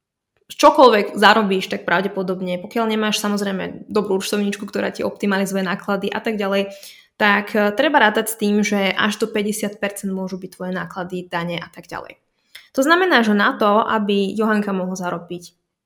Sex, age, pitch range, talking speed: female, 20-39, 195-260 Hz, 160 wpm